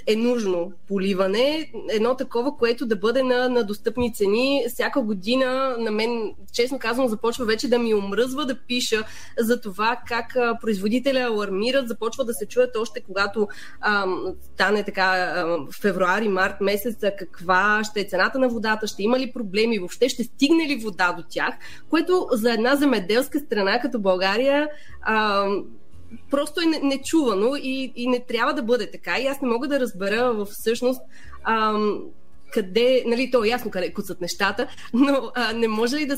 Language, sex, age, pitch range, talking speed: Bulgarian, female, 20-39, 200-250 Hz, 160 wpm